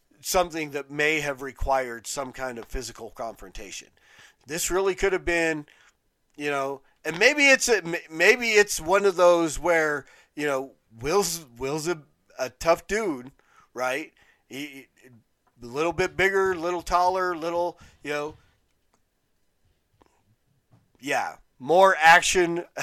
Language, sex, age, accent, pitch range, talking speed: English, male, 40-59, American, 140-175 Hz, 135 wpm